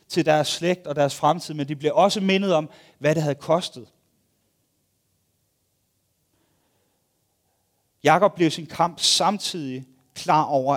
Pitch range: 130-170 Hz